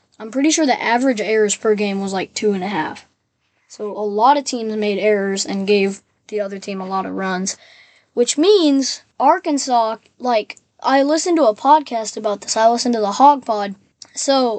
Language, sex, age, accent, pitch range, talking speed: English, female, 20-39, American, 210-255 Hz, 200 wpm